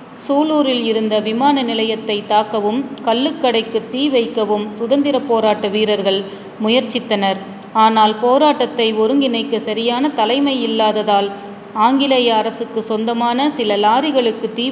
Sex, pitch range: female, 210-250 Hz